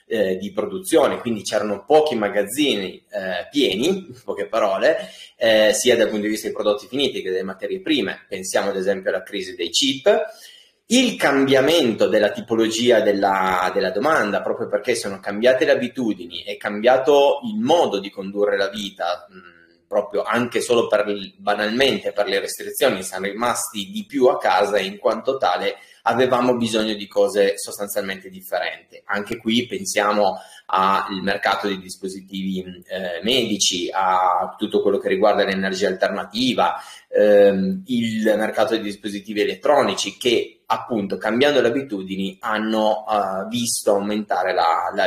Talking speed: 150 wpm